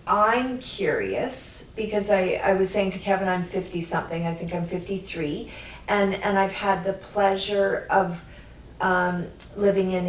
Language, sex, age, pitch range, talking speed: English, female, 40-59, 180-195 Hz, 150 wpm